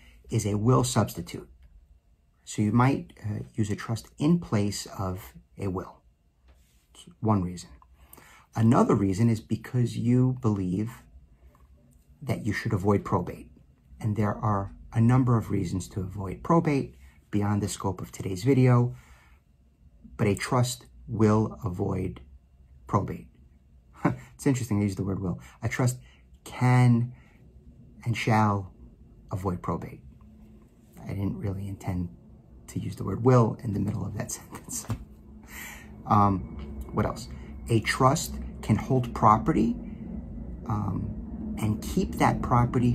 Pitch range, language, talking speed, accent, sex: 70-115 Hz, English, 130 wpm, American, male